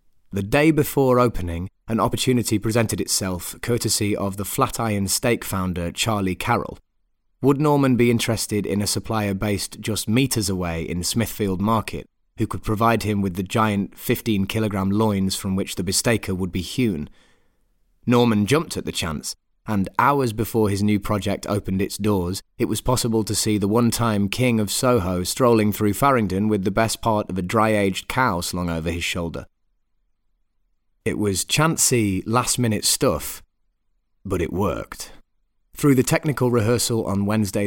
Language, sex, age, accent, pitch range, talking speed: English, male, 30-49, British, 95-115 Hz, 165 wpm